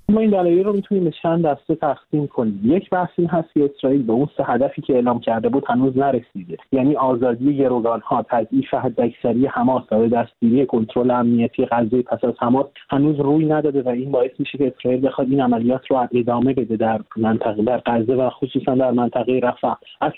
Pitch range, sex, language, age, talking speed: 125-155 Hz, male, Persian, 30-49, 185 wpm